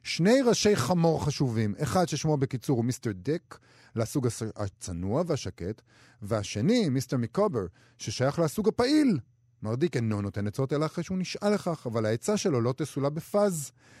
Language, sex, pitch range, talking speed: Hebrew, male, 110-160 Hz, 145 wpm